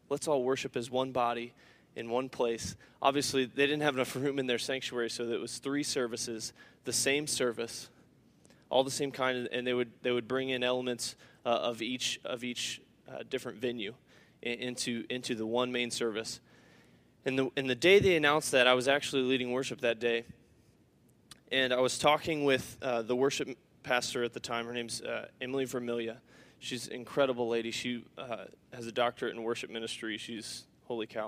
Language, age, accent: English, 20-39, American